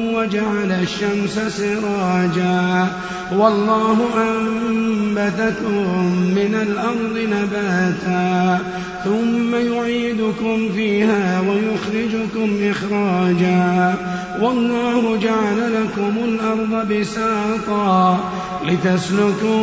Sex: male